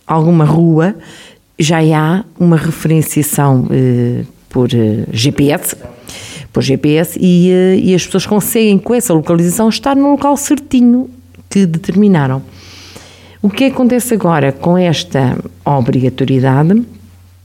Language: Portuguese